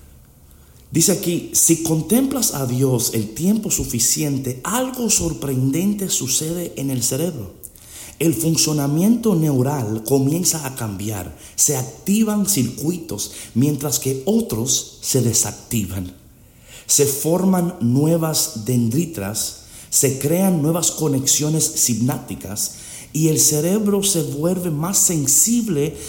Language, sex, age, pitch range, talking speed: Spanish, male, 50-69, 110-150 Hz, 105 wpm